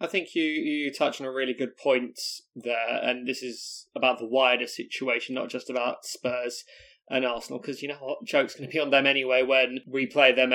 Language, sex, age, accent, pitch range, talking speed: English, male, 20-39, British, 125-140 Hz, 220 wpm